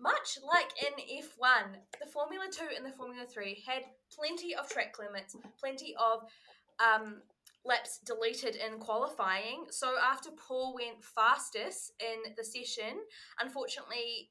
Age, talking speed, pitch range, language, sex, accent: 10-29, 135 wpm, 225-290 Hz, English, female, Australian